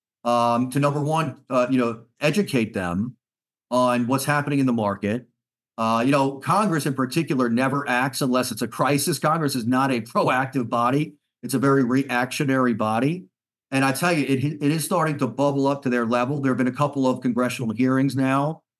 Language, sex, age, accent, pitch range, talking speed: English, male, 40-59, American, 120-140 Hz, 195 wpm